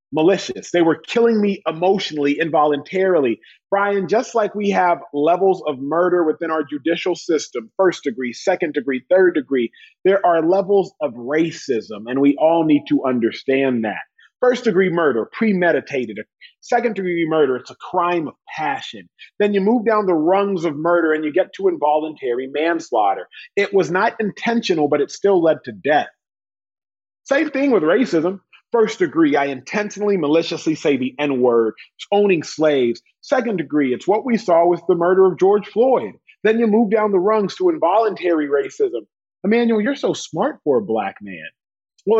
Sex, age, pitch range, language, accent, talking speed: male, 30-49, 155-220 Hz, English, American, 170 wpm